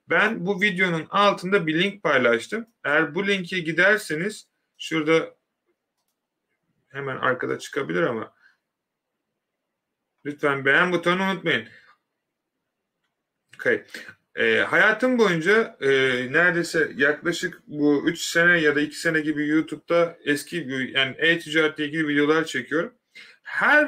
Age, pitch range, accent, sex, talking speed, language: 30-49, 145-185 Hz, native, male, 110 wpm, Turkish